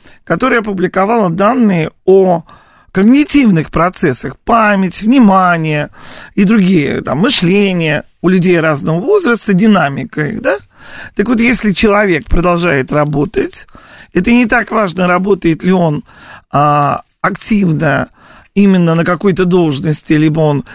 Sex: male